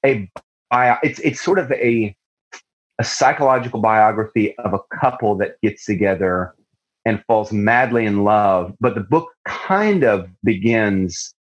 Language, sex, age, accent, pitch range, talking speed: English, male, 30-49, American, 95-125 Hz, 140 wpm